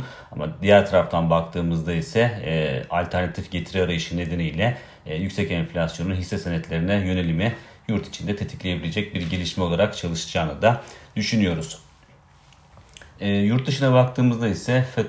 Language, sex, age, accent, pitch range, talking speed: Turkish, male, 40-59, native, 85-95 Hz, 125 wpm